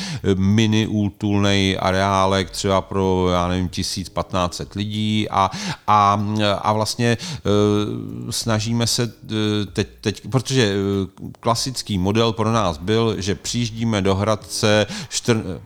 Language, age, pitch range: Czech, 40-59, 95-105 Hz